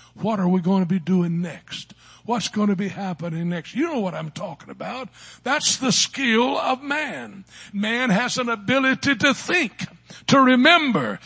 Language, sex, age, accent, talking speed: English, male, 60-79, American, 175 wpm